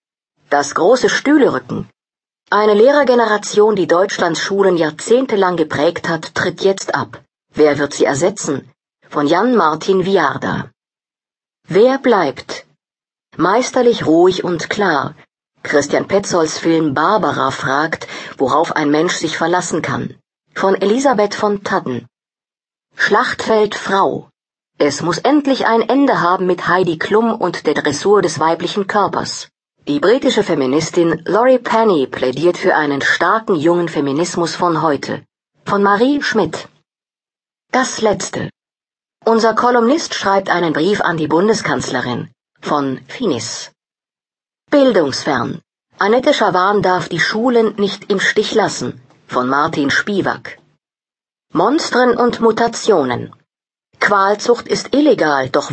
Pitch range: 160-225 Hz